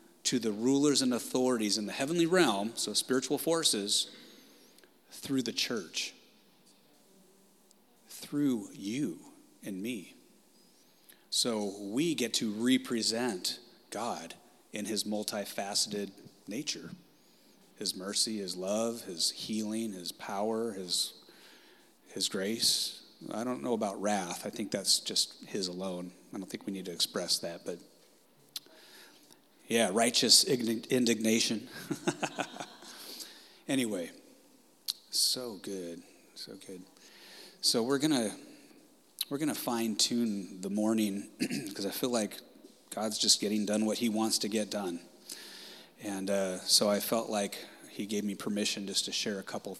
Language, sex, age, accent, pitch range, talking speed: English, male, 30-49, American, 100-125 Hz, 130 wpm